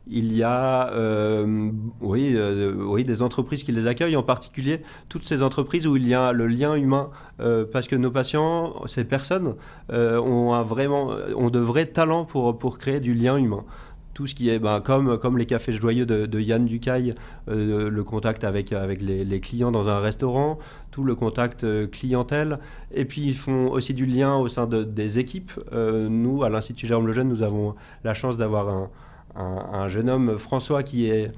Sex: male